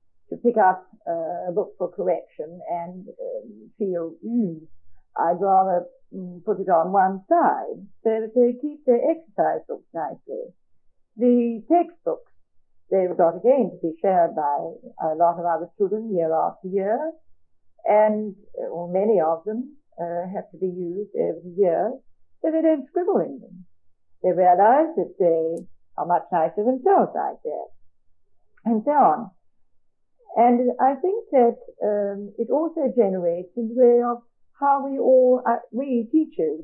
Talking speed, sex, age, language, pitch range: 150 wpm, female, 50-69, English, 170-260 Hz